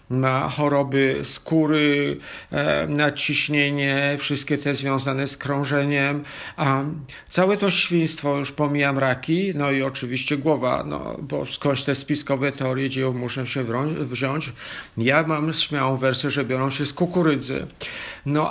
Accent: native